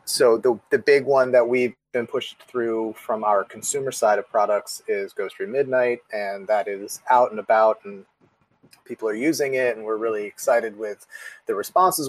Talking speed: 185 wpm